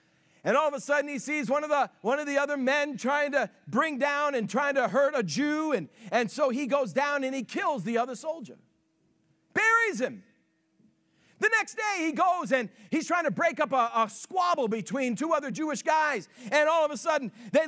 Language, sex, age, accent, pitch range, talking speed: English, male, 50-69, American, 235-320 Hz, 215 wpm